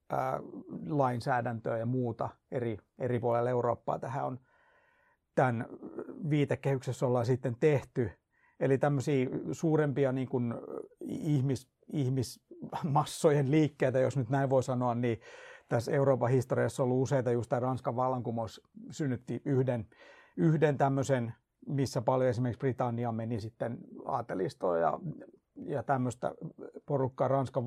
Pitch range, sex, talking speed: 120-140 Hz, male, 115 wpm